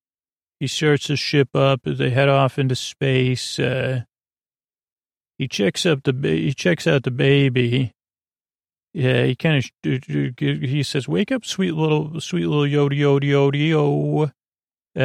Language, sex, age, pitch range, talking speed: English, male, 40-59, 125-140 Hz, 150 wpm